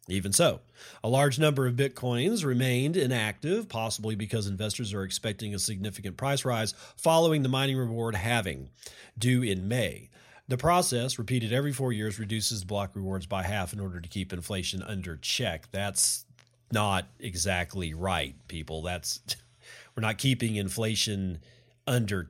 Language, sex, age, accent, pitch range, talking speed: English, male, 40-59, American, 100-130 Hz, 150 wpm